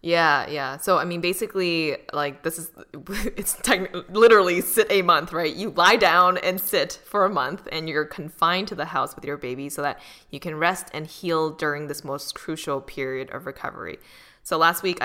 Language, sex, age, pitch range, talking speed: English, female, 10-29, 155-220 Hz, 195 wpm